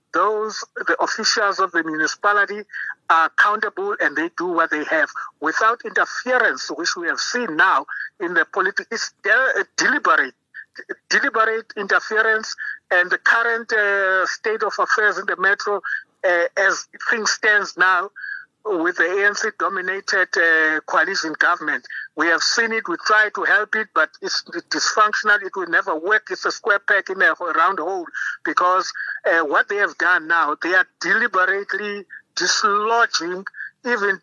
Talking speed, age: 155 wpm, 50-69